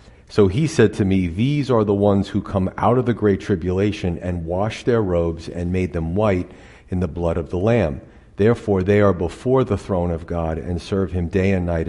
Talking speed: 220 wpm